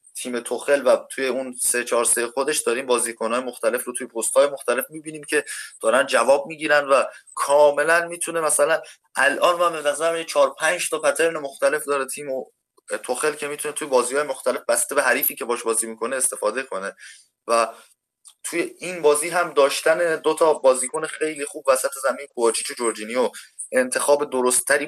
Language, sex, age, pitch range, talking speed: Persian, male, 20-39, 120-155 Hz, 170 wpm